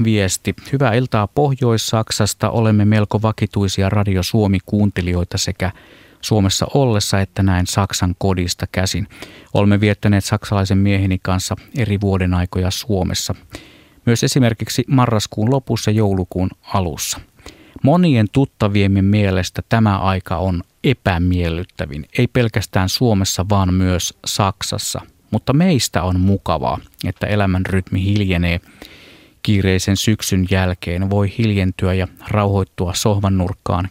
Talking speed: 110 wpm